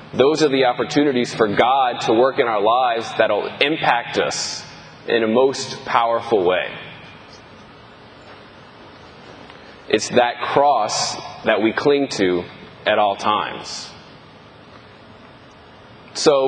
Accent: American